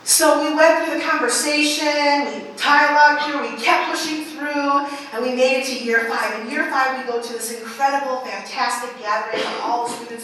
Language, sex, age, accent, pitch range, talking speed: English, female, 40-59, American, 235-300 Hz, 200 wpm